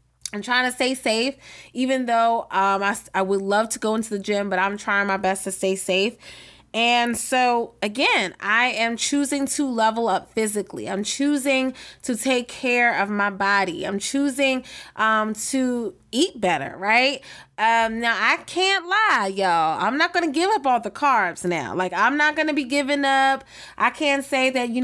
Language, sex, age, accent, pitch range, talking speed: English, female, 20-39, American, 205-270 Hz, 185 wpm